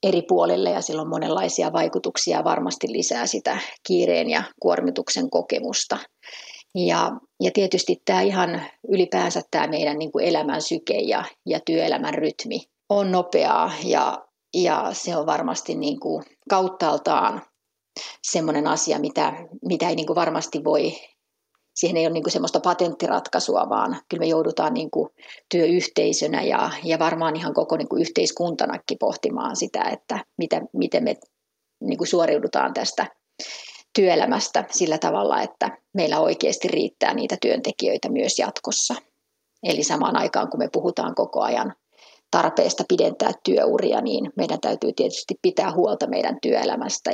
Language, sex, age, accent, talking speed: Finnish, female, 30-49, native, 125 wpm